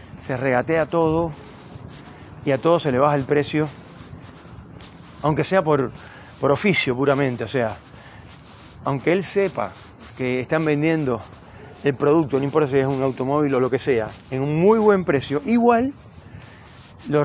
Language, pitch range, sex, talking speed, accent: Spanish, 125-155 Hz, male, 155 wpm, Argentinian